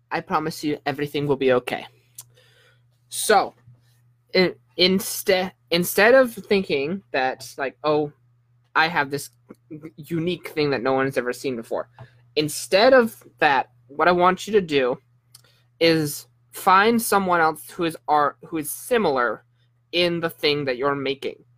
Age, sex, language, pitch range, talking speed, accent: 20-39, male, English, 120-170 Hz, 135 wpm, American